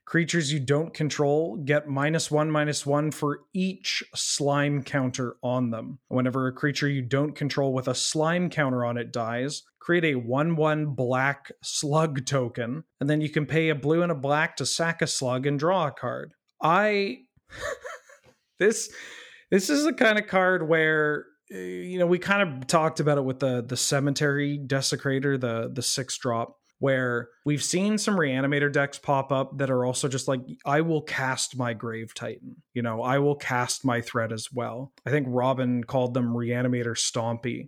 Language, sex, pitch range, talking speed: English, male, 125-155 Hz, 180 wpm